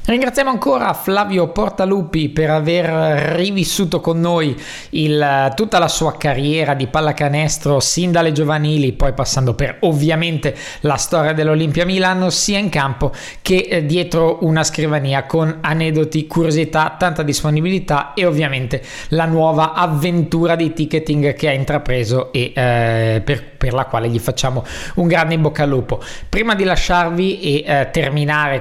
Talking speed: 145 wpm